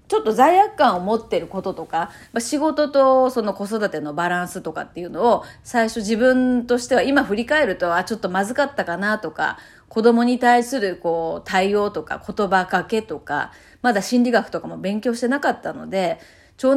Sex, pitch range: female, 195-295 Hz